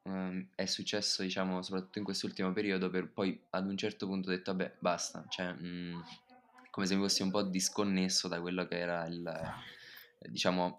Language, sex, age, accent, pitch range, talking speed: Italian, male, 20-39, native, 90-95 Hz, 185 wpm